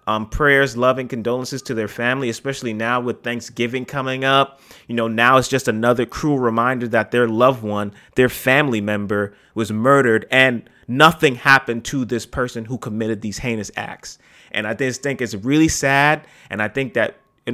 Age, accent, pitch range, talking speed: 30-49, American, 125-165 Hz, 185 wpm